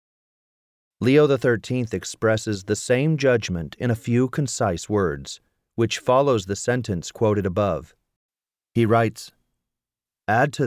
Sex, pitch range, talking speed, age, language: male, 100-140 Hz, 120 wpm, 40-59, English